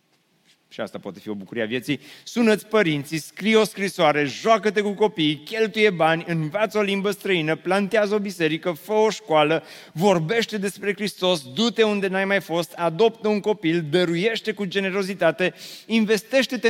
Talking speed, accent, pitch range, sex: 155 wpm, native, 180-230 Hz, male